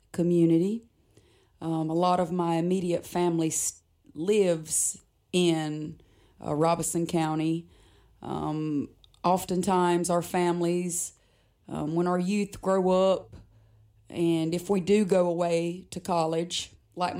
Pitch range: 155-175 Hz